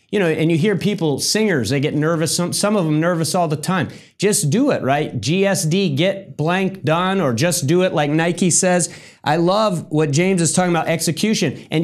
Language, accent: English, American